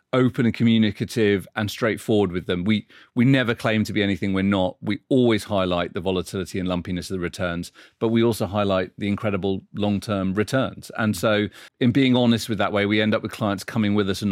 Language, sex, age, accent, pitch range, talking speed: English, male, 40-59, British, 100-120 Hz, 215 wpm